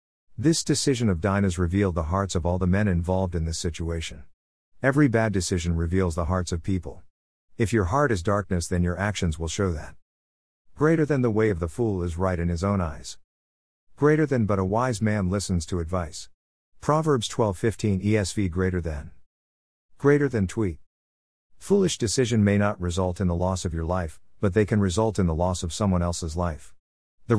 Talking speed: 195 wpm